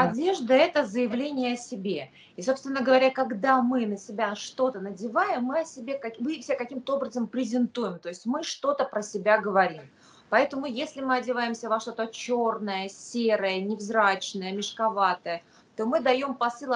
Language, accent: Russian, native